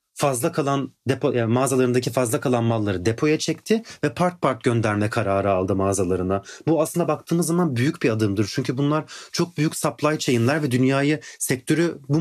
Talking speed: 165 wpm